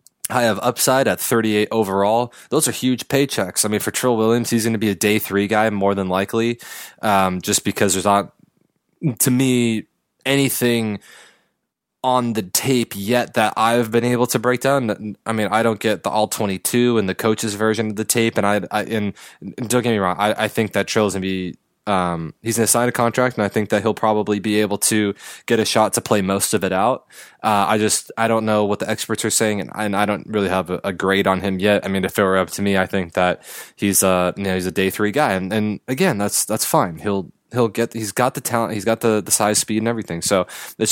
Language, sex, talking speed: English, male, 245 wpm